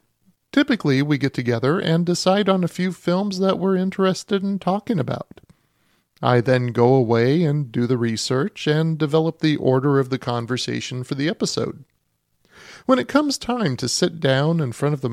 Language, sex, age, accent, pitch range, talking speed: English, male, 40-59, American, 125-170 Hz, 180 wpm